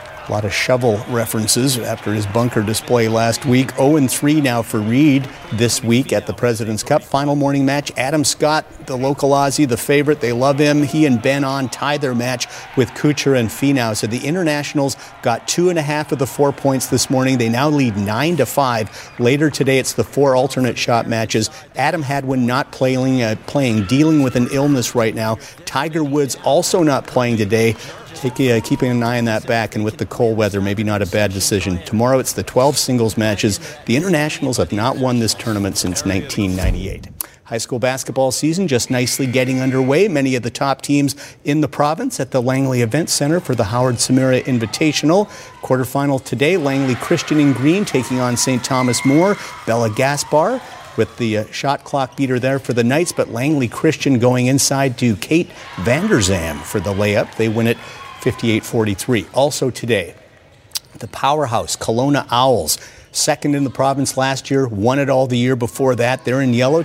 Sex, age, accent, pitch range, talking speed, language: male, 50-69, American, 115-140 Hz, 190 wpm, English